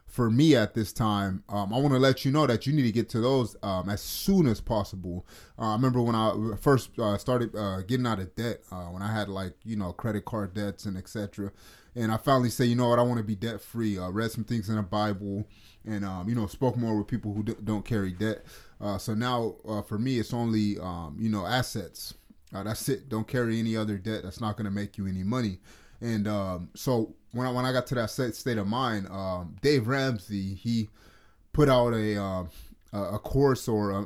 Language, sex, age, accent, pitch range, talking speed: English, male, 30-49, American, 105-125 Hz, 240 wpm